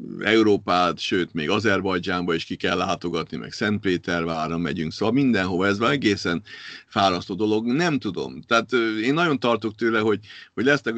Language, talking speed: Hungarian, 155 wpm